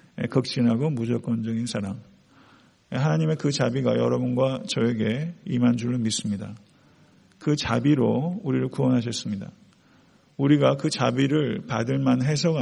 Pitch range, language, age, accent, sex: 120-160 Hz, Korean, 50-69, native, male